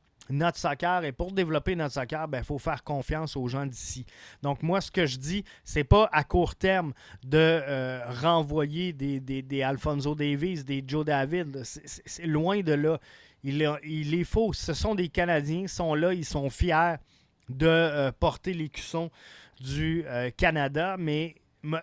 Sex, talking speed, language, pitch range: male, 185 wpm, French, 135-165 Hz